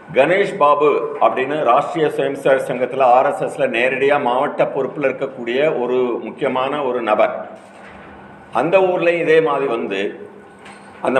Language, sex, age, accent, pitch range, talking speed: Tamil, male, 50-69, native, 120-165 Hz, 120 wpm